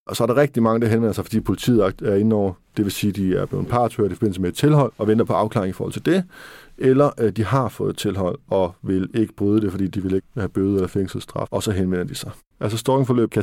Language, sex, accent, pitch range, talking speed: Danish, male, native, 105-135 Hz, 275 wpm